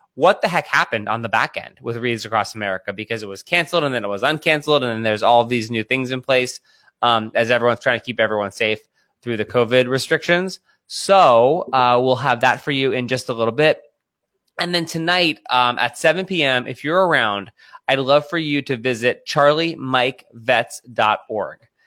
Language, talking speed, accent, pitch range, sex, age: English, 195 wpm, American, 110-140 Hz, male, 20-39